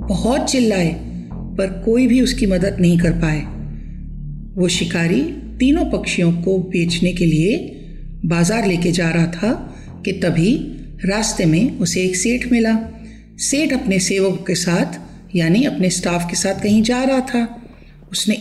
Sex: female